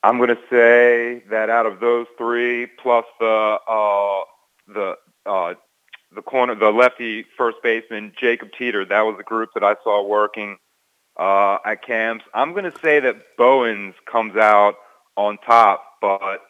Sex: male